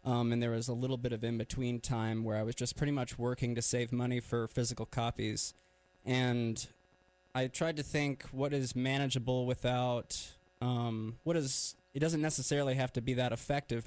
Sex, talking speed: male, 185 wpm